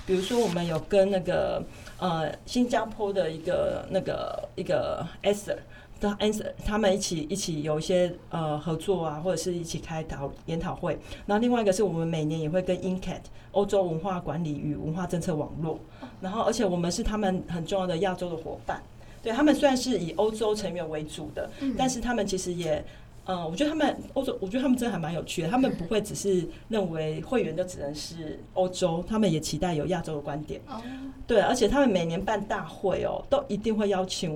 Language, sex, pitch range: Chinese, female, 165-205 Hz